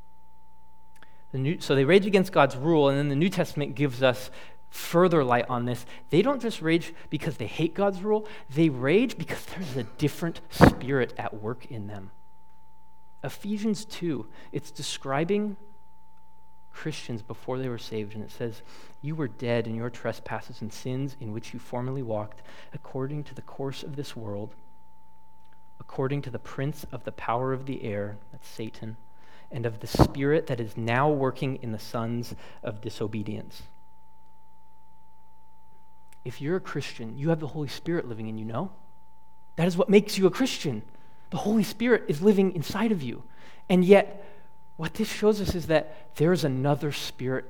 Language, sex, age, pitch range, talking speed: English, male, 30-49, 125-175 Hz, 170 wpm